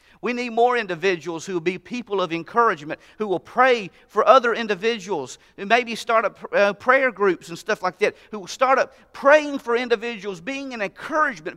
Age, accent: 40-59, American